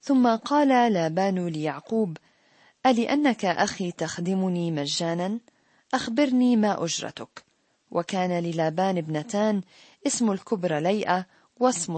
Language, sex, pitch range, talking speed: Arabic, female, 170-220 Hz, 90 wpm